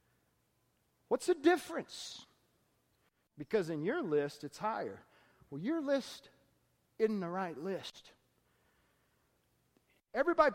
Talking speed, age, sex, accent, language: 95 wpm, 40-59, male, American, English